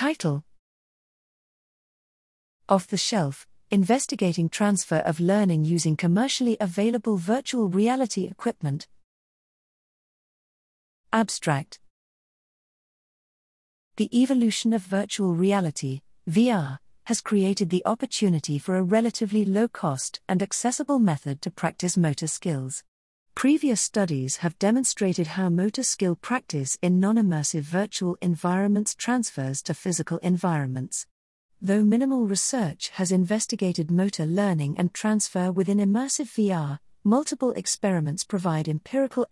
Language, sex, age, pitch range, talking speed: English, female, 40-59, 160-220 Hz, 105 wpm